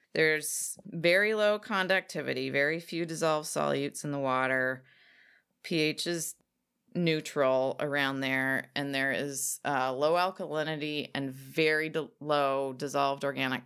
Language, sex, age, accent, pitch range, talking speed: English, female, 30-49, American, 135-175 Hz, 120 wpm